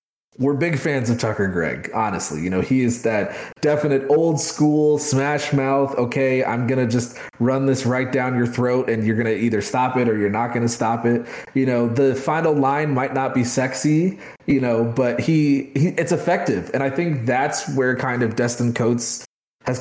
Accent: American